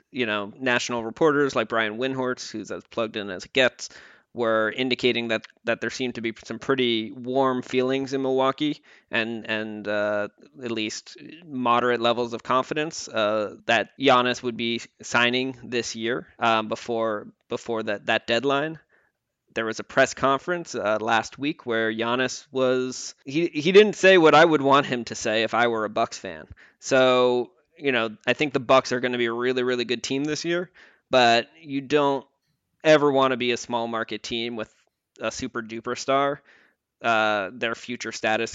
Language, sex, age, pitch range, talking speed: English, male, 20-39, 110-135 Hz, 180 wpm